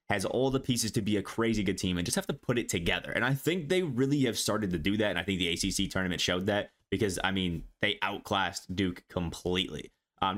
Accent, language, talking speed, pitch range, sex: American, English, 250 wpm, 95-115 Hz, male